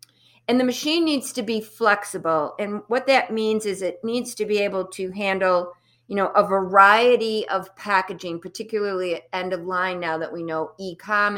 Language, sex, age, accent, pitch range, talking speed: English, female, 50-69, American, 180-220 Hz, 185 wpm